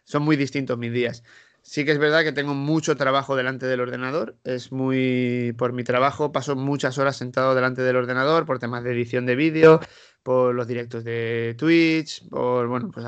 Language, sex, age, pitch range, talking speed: Spanish, male, 20-39, 125-145 Hz, 195 wpm